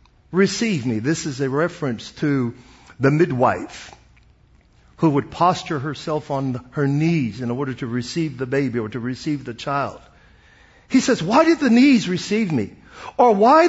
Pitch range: 140-230 Hz